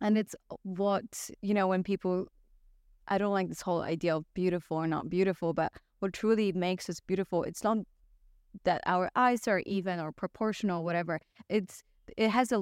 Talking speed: 185 wpm